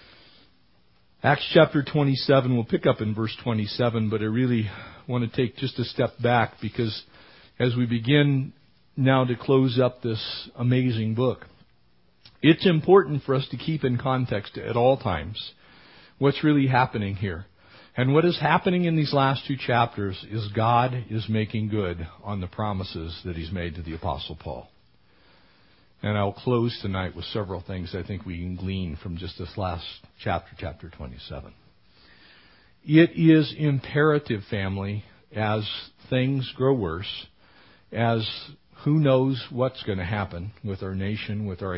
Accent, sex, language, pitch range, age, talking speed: American, male, English, 95-130 Hz, 50-69, 155 wpm